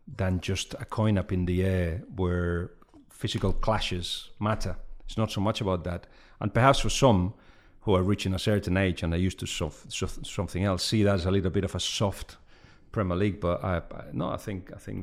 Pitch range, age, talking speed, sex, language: 90-105 Hz, 40-59, 215 wpm, male, English